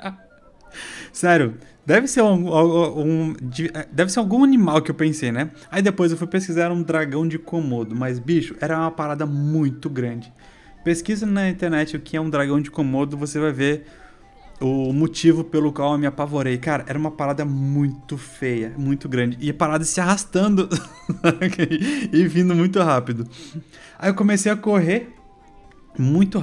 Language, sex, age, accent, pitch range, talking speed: Portuguese, male, 20-39, Brazilian, 150-195 Hz, 155 wpm